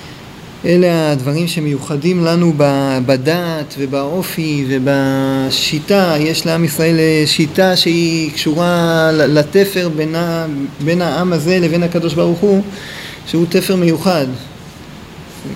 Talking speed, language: 95 wpm, Hebrew